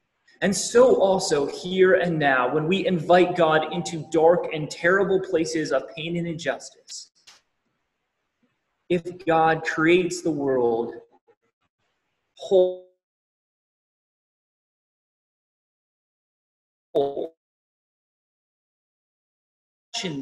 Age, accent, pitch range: 30-49, American, 135-205 Hz